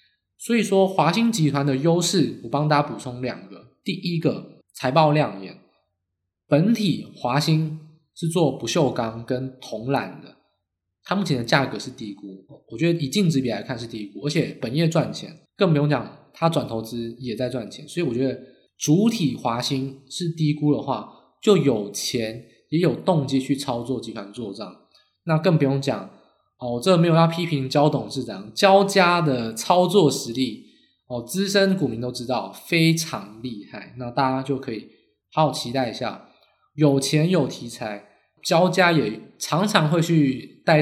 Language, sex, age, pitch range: Chinese, male, 20-39, 120-165 Hz